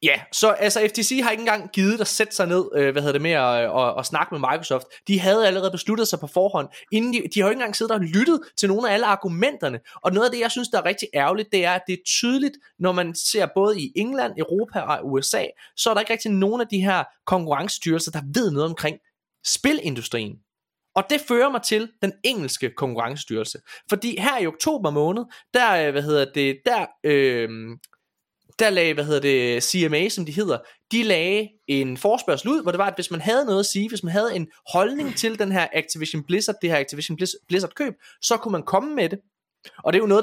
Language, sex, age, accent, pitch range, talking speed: Danish, male, 20-39, native, 155-225 Hz, 230 wpm